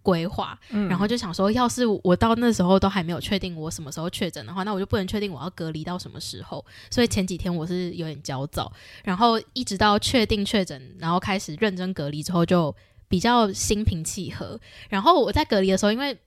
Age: 10-29